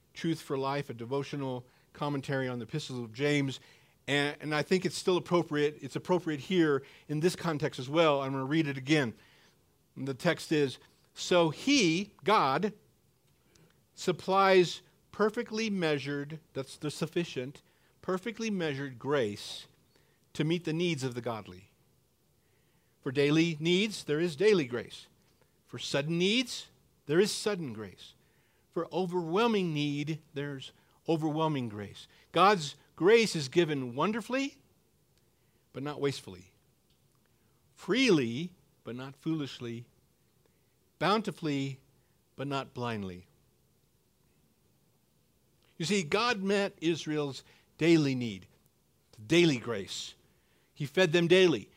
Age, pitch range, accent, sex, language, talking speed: 50-69, 135-175 Hz, American, male, English, 120 wpm